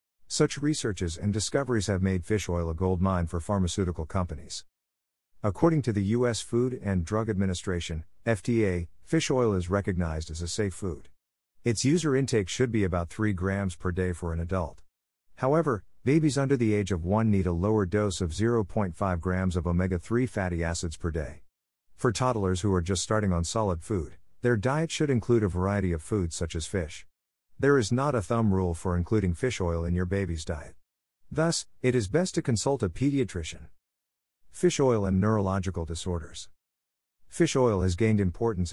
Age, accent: 50-69, American